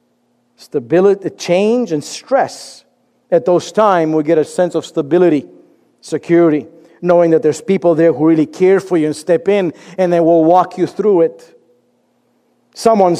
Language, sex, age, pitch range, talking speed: English, male, 50-69, 160-195 Hz, 160 wpm